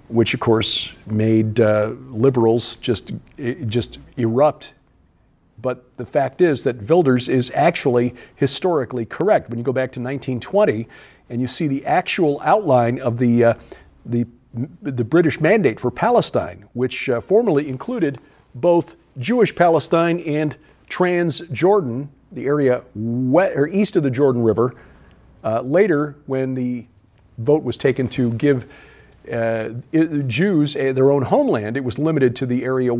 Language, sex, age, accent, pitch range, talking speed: English, male, 50-69, American, 120-165 Hz, 145 wpm